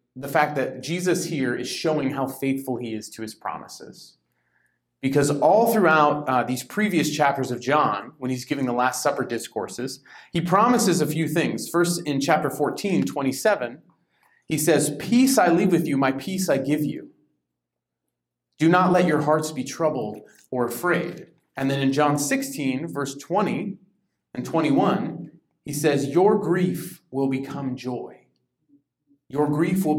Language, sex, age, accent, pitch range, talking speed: English, male, 30-49, American, 130-165 Hz, 160 wpm